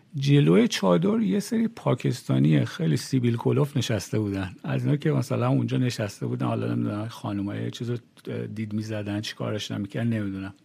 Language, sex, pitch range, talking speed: Persian, male, 125-185 Hz, 150 wpm